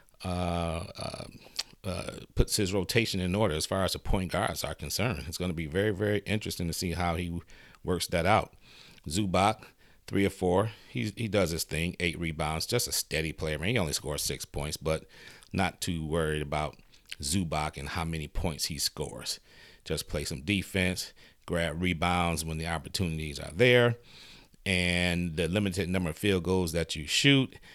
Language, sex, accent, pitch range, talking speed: English, male, American, 80-100 Hz, 175 wpm